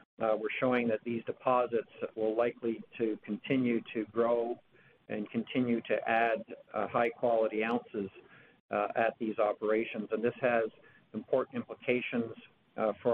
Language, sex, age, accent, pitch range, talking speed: English, male, 50-69, American, 110-125 Hz, 135 wpm